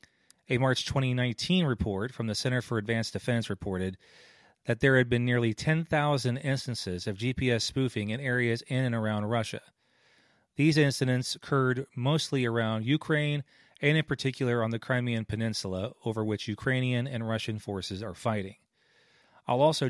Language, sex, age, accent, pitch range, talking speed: English, male, 30-49, American, 105-135 Hz, 150 wpm